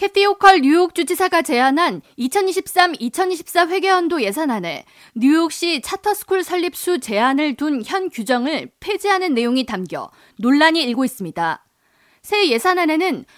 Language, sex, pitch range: Korean, female, 260-370 Hz